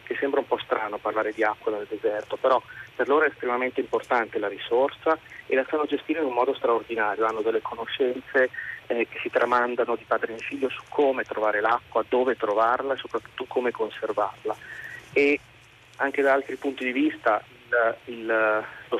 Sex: male